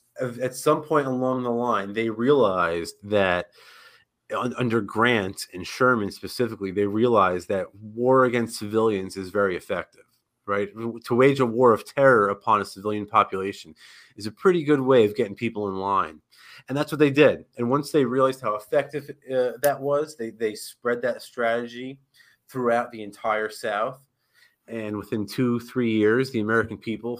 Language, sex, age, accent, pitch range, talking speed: English, male, 30-49, American, 110-140 Hz, 165 wpm